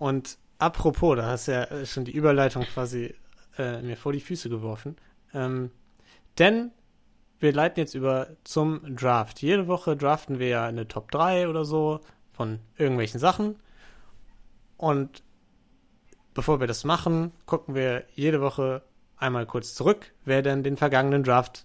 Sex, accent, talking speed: male, German, 150 wpm